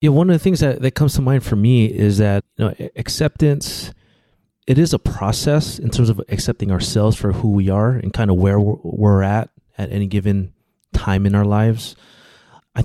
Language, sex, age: English, male, 30-49